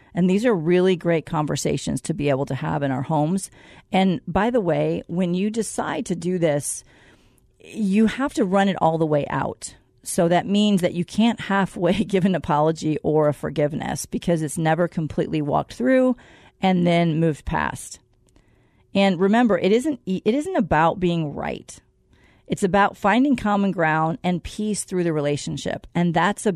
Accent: American